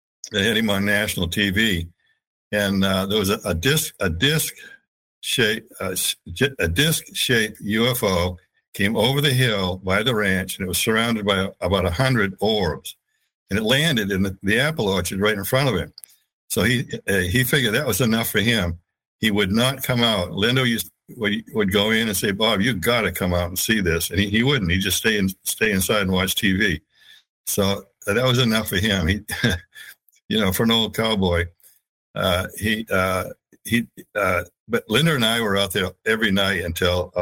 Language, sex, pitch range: English, male, 95-110 Hz